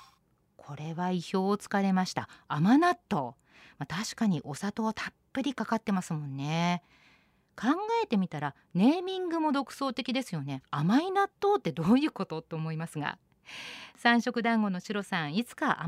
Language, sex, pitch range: Japanese, female, 175-260 Hz